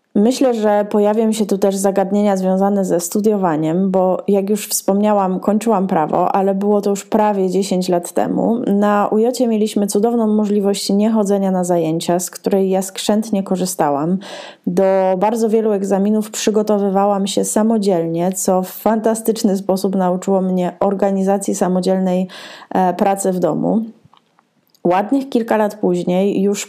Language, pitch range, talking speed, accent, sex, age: Polish, 190-215 Hz, 135 wpm, native, female, 20-39